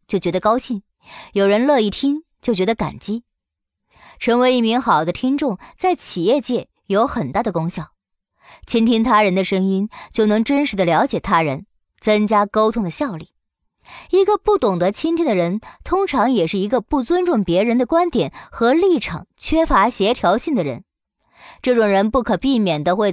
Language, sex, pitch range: Chinese, male, 195-285 Hz